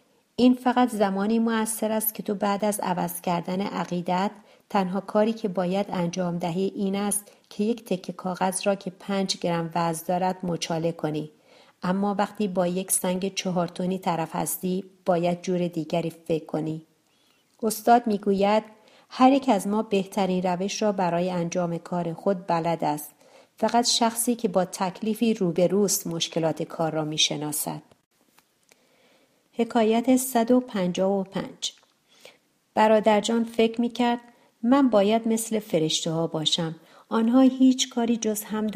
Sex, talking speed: female, 135 wpm